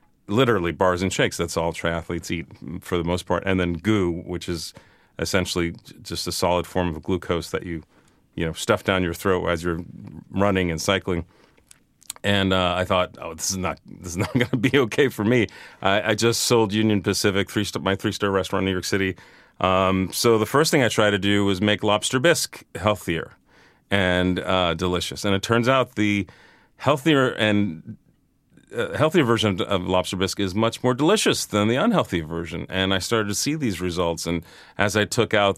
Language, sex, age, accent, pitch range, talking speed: English, male, 40-59, American, 90-110 Hz, 195 wpm